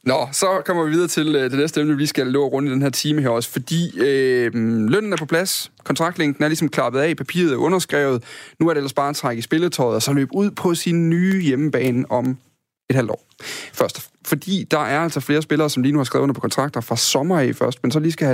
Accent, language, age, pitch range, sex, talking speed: native, Danish, 30-49, 120-150 Hz, male, 255 wpm